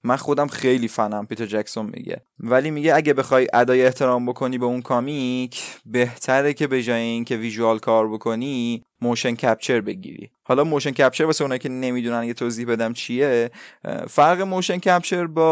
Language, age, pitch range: Persian, 20-39, 115-135 Hz